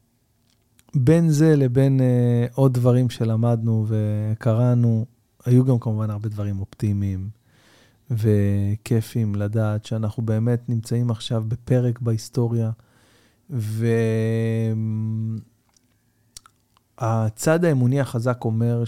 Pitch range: 110-120 Hz